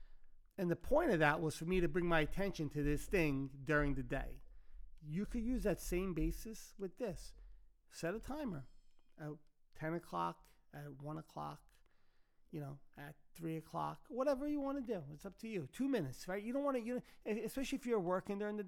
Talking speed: 205 wpm